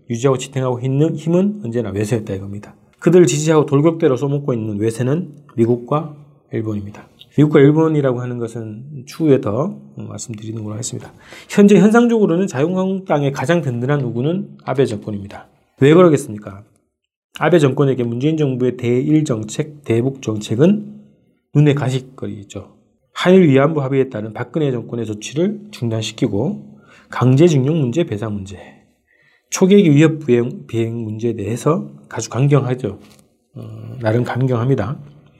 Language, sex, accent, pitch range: Korean, male, native, 115-155 Hz